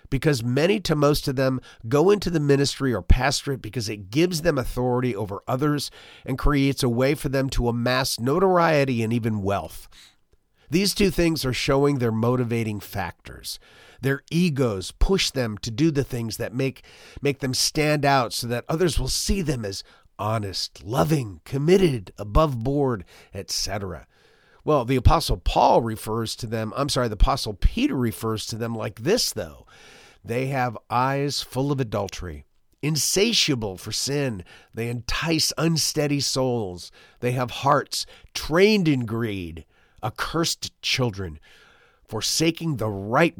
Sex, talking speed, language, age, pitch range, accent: male, 150 wpm, English, 40-59, 110-150 Hz, American